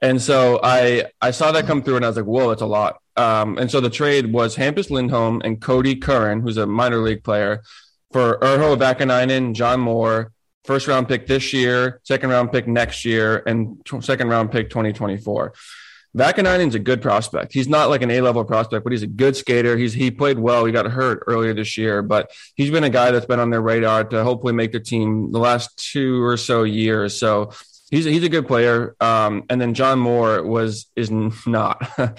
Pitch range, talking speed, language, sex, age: 115-130 Hz, 210 wpm, English, male, 20-39